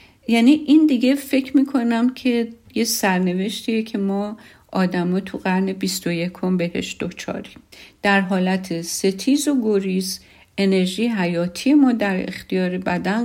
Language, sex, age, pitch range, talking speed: Persian, female, 50-69, 180-225 Hz, 120 wpm